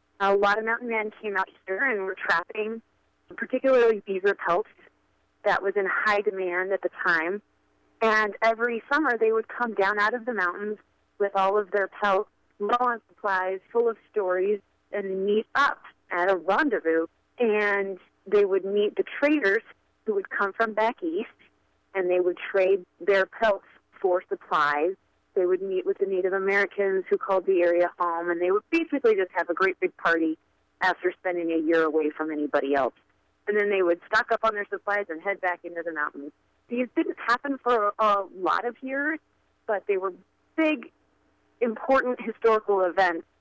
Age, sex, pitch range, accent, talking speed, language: 30-49, female, 185-225 Hz, American, 180 wpm, English